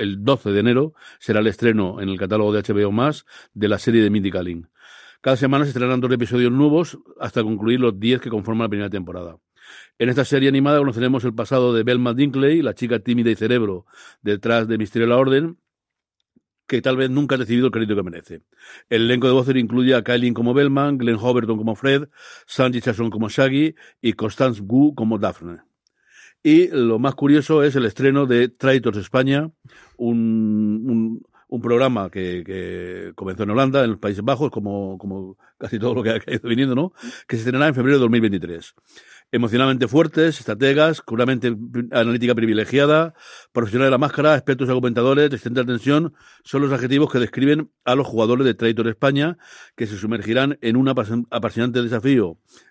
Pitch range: 110-135 Hz